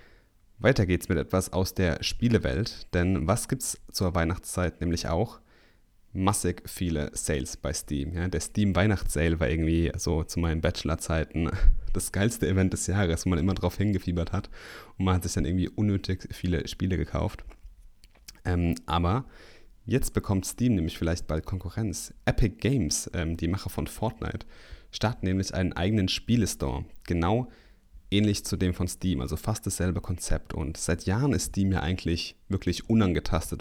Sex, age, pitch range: male, 30-49, 85-100 Hz